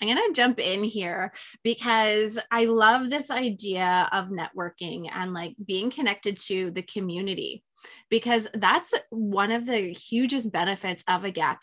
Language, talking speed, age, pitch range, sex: English, 155 wpm, 20-39, 190-230 Hz, female